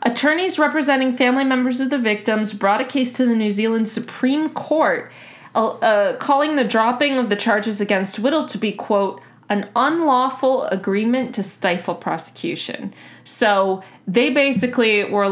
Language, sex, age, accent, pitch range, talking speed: English, female, 20-39, American, 195-265 Hz, 155 wpm